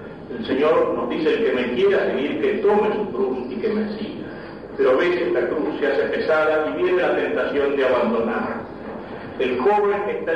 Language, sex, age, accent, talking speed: Spanish, male, 40-59, Argentinian, 190 wpm